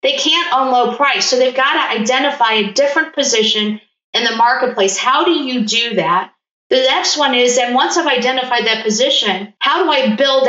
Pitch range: 215-270 Hz